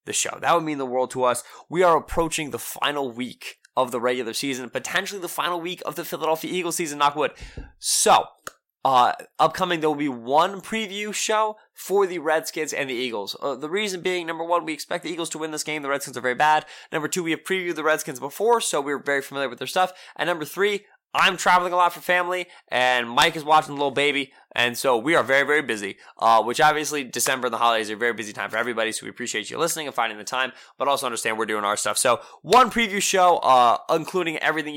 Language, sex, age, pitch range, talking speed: English, male, 20-39, 130-170 Hz, 240 wpm